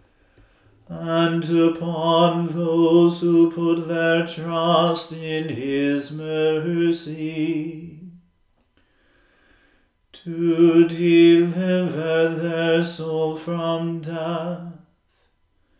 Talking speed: 60 wpm